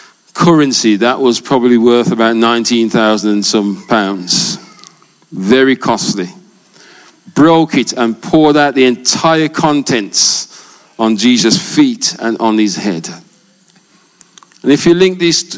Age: 40-59